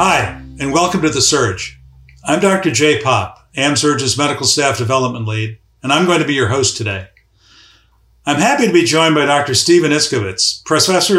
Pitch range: 115-150 Hz